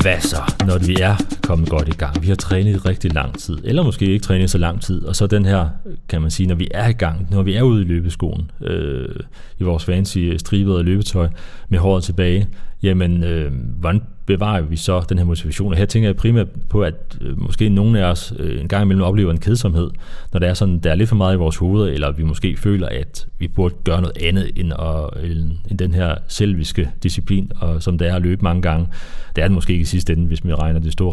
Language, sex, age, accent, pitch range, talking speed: Danish, male, 30-49, native, 85-100 Hz, 235 wpm